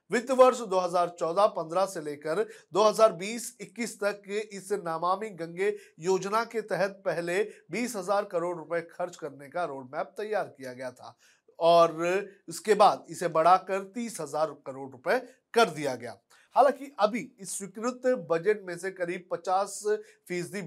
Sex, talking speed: male, 150 wpm